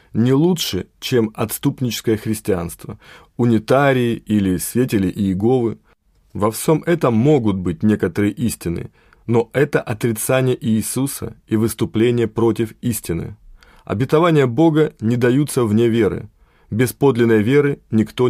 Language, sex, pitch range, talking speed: Russian, male, 110-135 Hz, 115 wpm